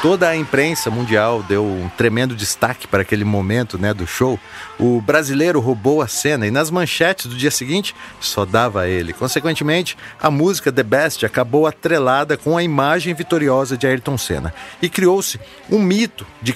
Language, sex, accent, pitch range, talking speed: Portuguese, male, Brazilian, 110-150 Hz, 175 wpm